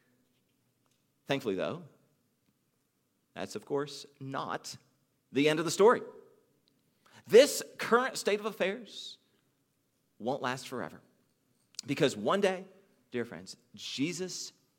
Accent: American